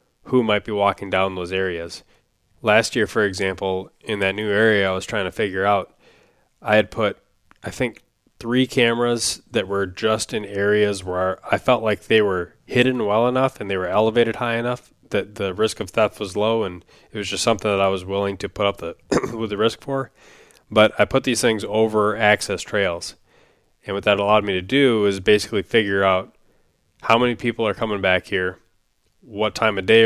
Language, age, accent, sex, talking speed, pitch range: English, 20-39, American, male, 205 wpm, 95-110 Hz